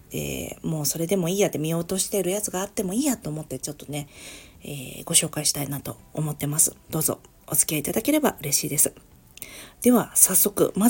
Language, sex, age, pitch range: Japanese, female, 40-59, 150-230 Hz